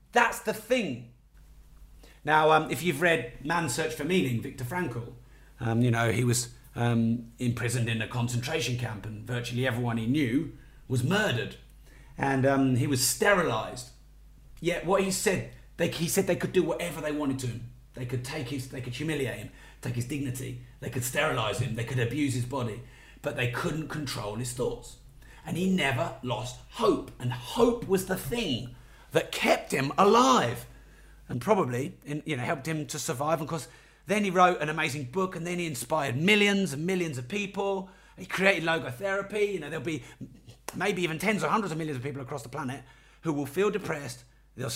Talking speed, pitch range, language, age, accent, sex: 185 wpm, 125-170 Hz, English, 40-59, British, male